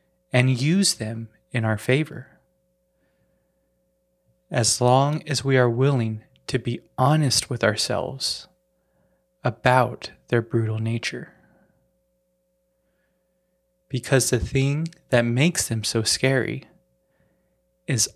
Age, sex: 20-39, male